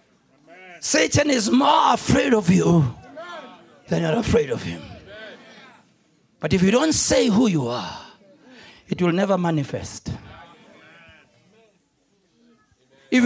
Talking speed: 110 wpm